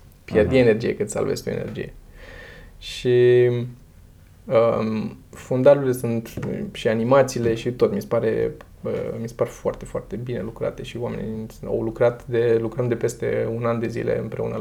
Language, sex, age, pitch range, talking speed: Romanian, male, 20-39, 110-130 Hz, 155 wpm